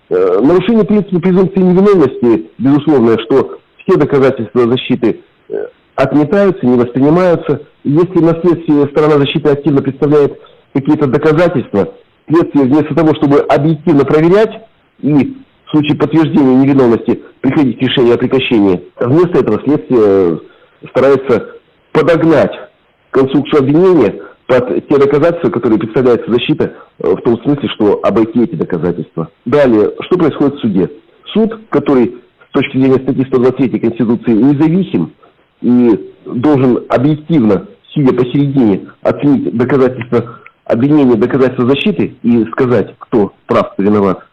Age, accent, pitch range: 50-69, native, 120-160 Hz